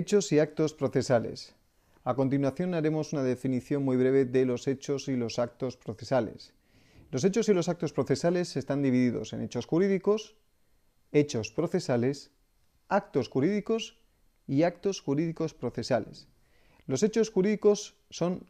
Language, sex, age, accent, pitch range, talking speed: Spanish, male, 40-59, Spanish, 120-165 Hz, 135 wpm